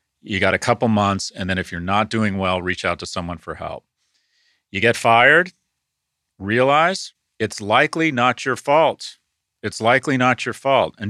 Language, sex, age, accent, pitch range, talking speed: English, male, 40-59, American, 100-135 Hz, 180 wpm